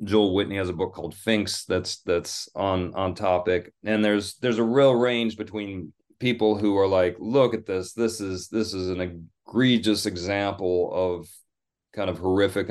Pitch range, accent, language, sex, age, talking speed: 90-105 Hz, American, English, male, 30-49, 175 wpm